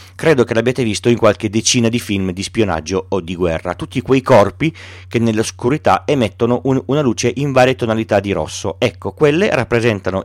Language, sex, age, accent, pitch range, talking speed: Italian, male, 40-59, native, 95-125 Hz, 175 wpm